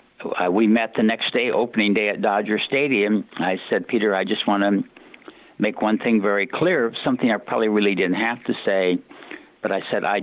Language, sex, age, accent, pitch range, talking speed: English, male, 60-79, American, 100-125 Hz, 205 wpm